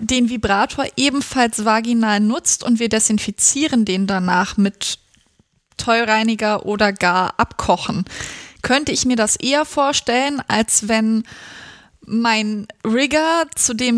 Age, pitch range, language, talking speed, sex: 20-39, 220-275 Hz, German, 115 wpm, female